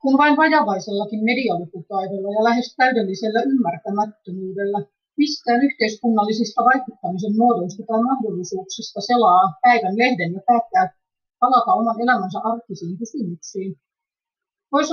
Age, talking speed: 30-49, 100 wpm